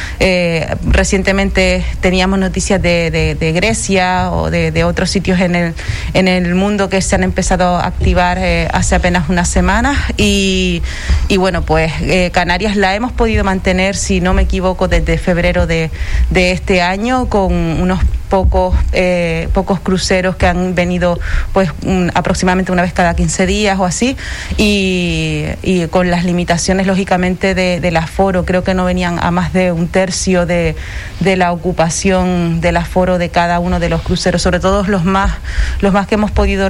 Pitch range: 175-195 Hz